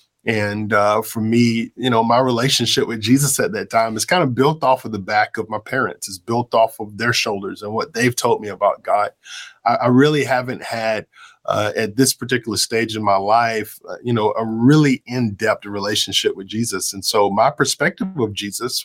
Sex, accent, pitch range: male, American, 105-120 Hz